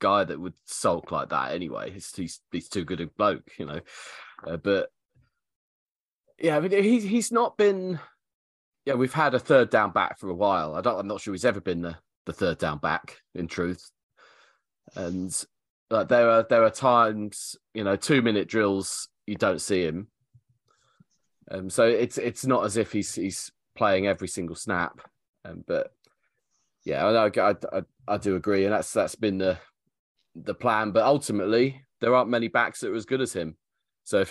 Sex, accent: male, British